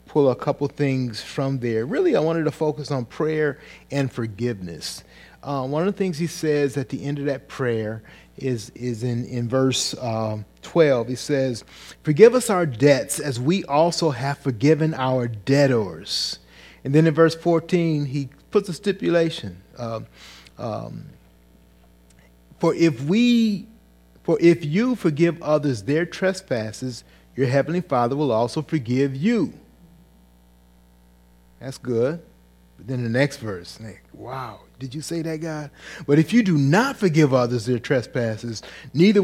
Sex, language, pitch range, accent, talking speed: male, English, 110-160 Hz, American, 150 wpm